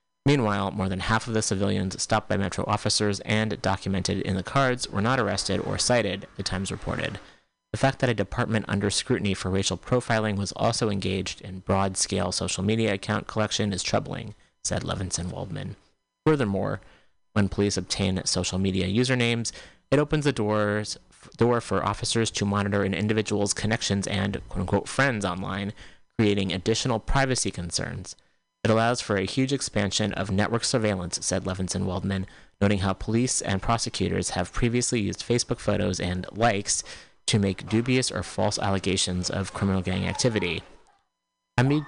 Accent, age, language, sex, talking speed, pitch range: American, 30-49, English, male, 155 wpm, 95-115 Hz